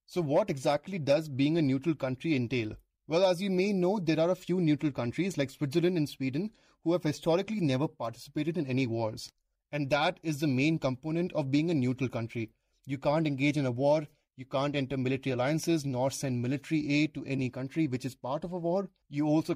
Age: 30-49